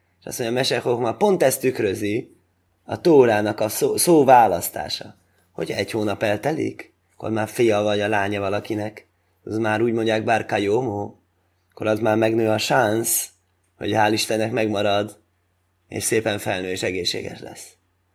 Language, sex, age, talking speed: Hungarian, male, 20-39, 165 wpm